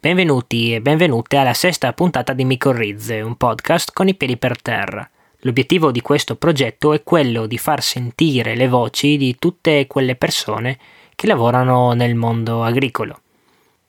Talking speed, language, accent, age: 150 wpm, Italian, native, 20-39